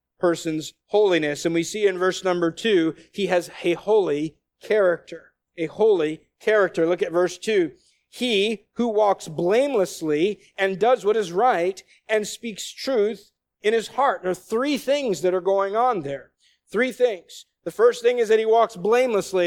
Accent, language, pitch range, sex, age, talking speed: American, English, 185-250 Hz, male, 50-69, 170 wpm